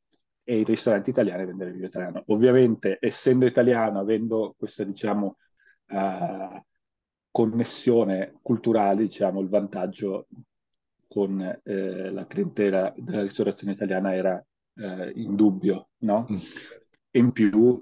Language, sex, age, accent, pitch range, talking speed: Italian, male, 30-49, native, 100-110 Hz, 100 wpm